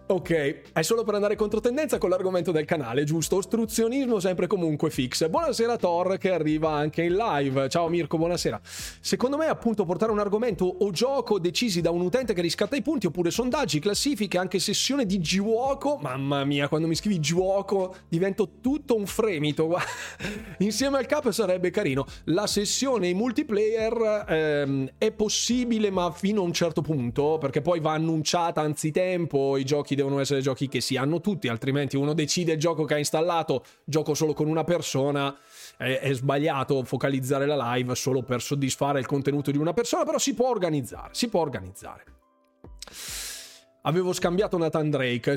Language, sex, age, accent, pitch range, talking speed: Italian, male, 30-49, native, 145-205 Hz, 170 wpm